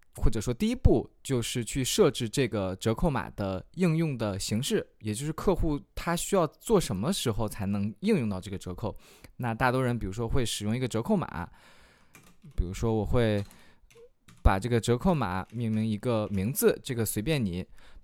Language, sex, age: Chinese, male, 20-39